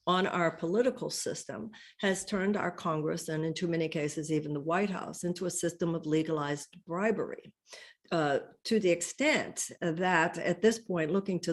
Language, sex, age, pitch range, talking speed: English, female, 60-79, 165-200 Hz, 170 wpm